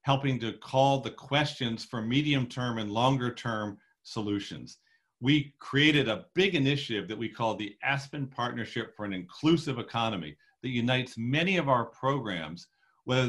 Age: 40-59